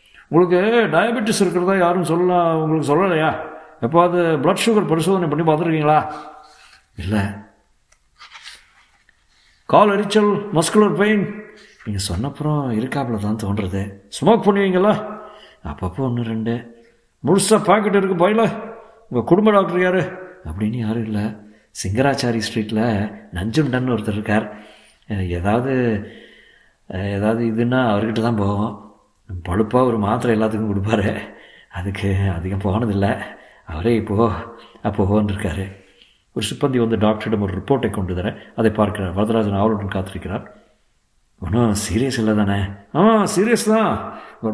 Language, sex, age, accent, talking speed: Tamil, male, 60-79, native, 110 wpm